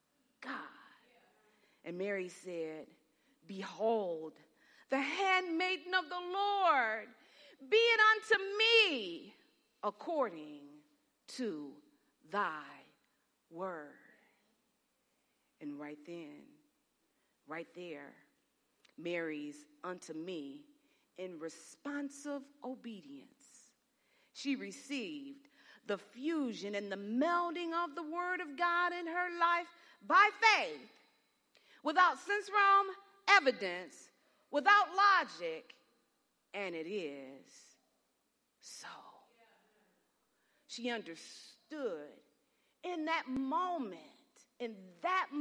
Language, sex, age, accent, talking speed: English, female, 40-59, American, 80 wpm